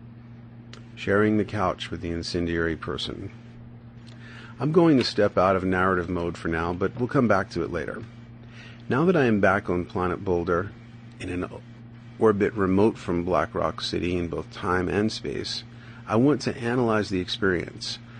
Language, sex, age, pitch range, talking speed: English, male, 40-59, 95-120 Hz, 170 wpm